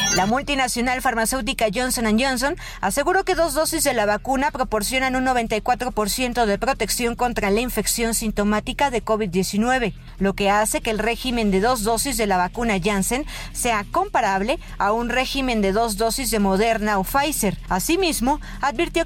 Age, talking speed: 50-69, 155 wpm